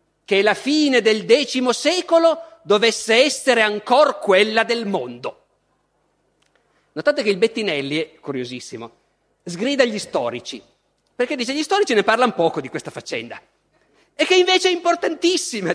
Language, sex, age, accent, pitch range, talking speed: Italian, male, 40-59, native, 190-255 Hz, 135 wpm